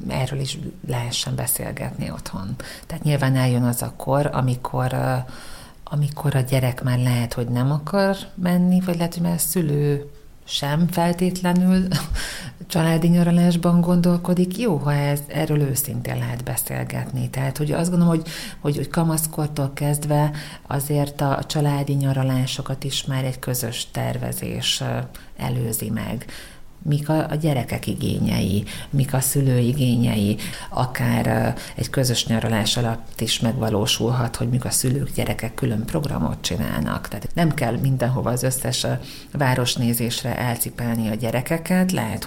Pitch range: 120-160 Hz